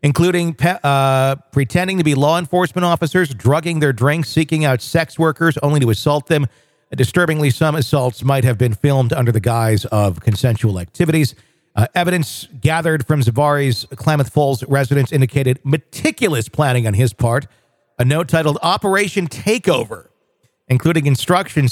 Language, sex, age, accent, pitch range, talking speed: English, male, 50-69, American, 115-150 Hz, 145 wpm